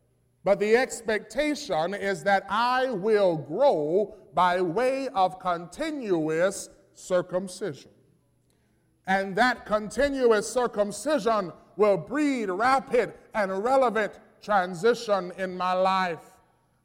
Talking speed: 95 wpm